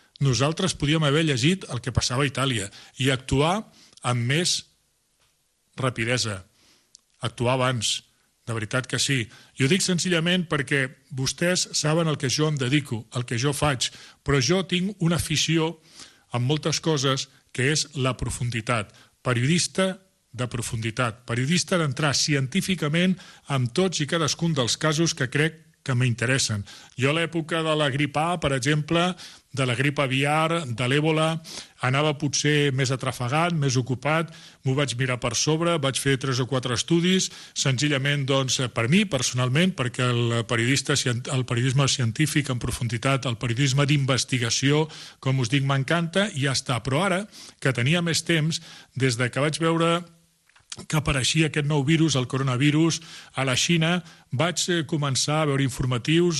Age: 40-59